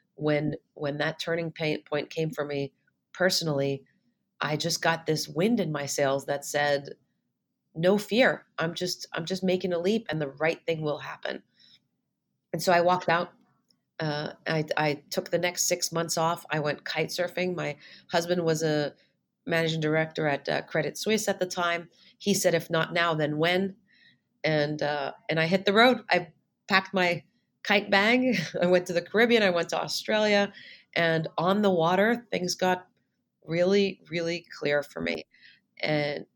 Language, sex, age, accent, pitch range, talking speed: English, female, 30-49, American, 155-180 Hz, 170 wpm